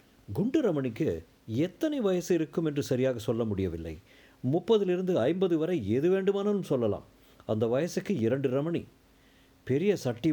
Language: Tamil